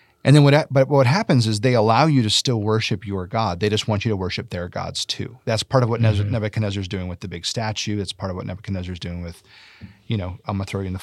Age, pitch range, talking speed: 30-49, 95-120 Hz, 285 wpm